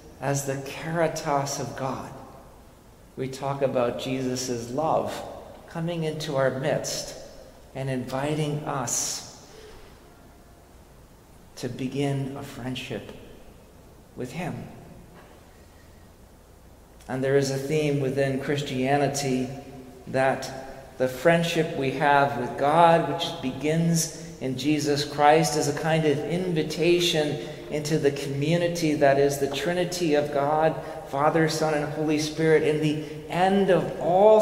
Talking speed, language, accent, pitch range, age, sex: 115 wpm, English, American, 130-155 Hz, 50-69, male